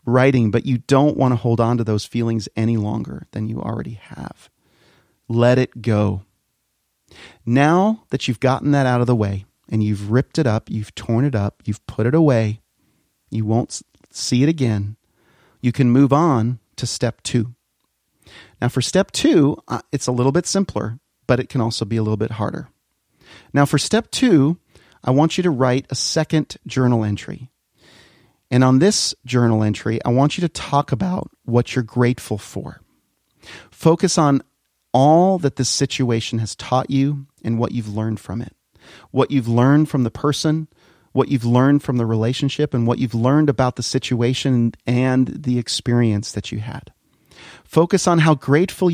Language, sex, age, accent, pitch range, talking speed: English, male, 40-59, American, 110-140 Hz, 175 wpm